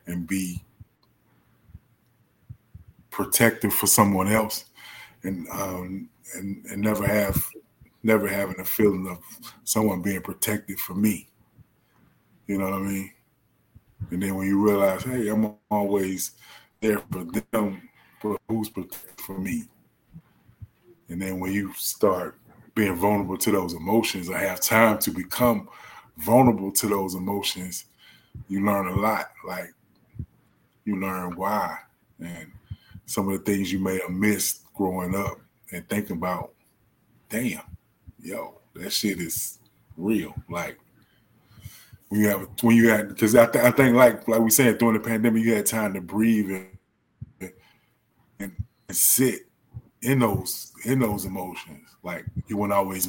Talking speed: 145 wpm